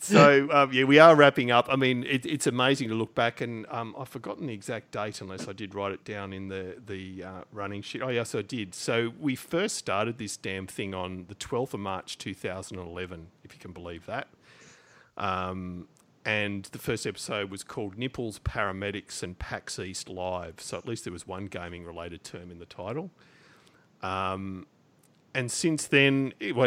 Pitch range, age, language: 95-120 Hz, 40-59, English